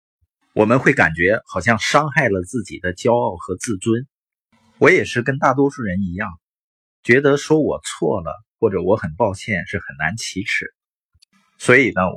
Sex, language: male, Chinese